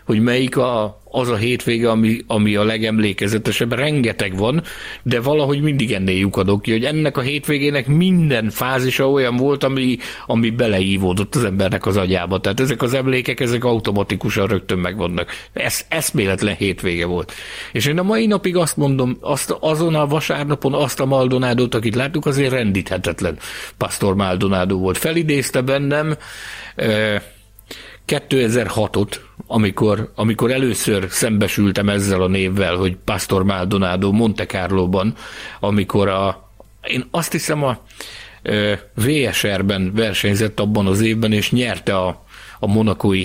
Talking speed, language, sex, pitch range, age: 135 wpm, Hungarian, male, 100-130 Hz, 60-79